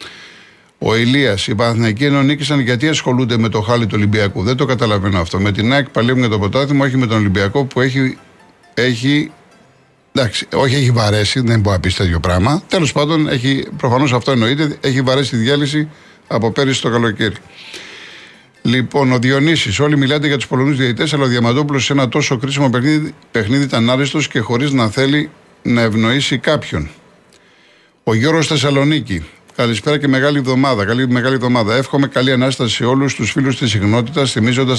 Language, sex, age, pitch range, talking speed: Greek, male, 50-69, 115-140 Hz, 170 wpm